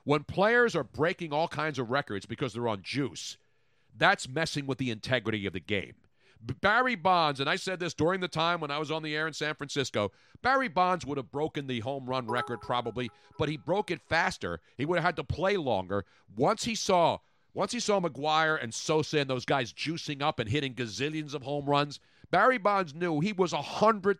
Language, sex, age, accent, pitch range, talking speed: English, male, 40-59, American, 140-200 Hz, 220 wpm